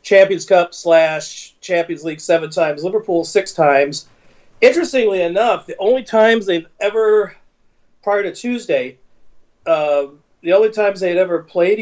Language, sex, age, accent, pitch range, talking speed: English, male, 40-59, American, 145-185 Hz, 135 wpm